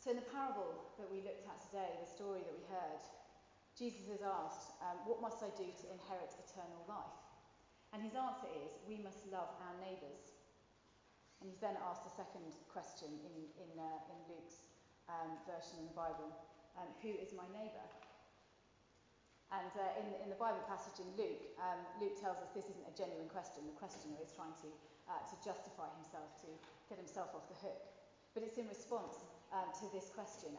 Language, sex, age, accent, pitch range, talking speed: English, female, 30-49, British, 165-200 Hz, 190 wpm